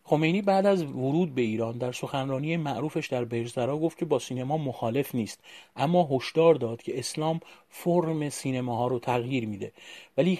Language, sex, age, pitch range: Persian, male, 40-59, 115-155 Hz